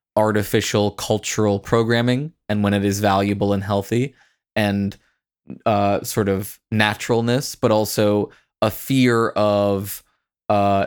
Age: 20-39